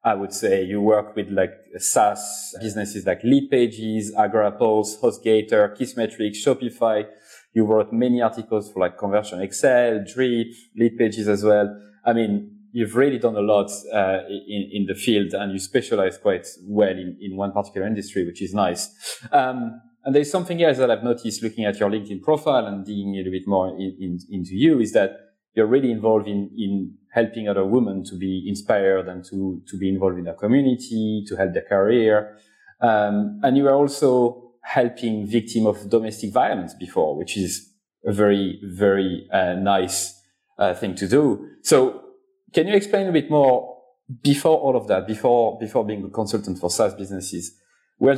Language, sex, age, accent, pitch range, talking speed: English, male, 30-49, French, 100-120 Hz, 175 wpm